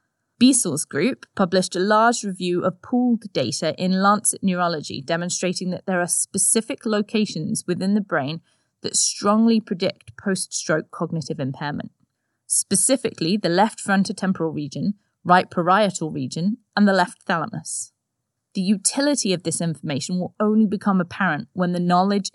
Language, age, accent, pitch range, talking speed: English, 20-39, British, 165-210 Hz, 135 wpm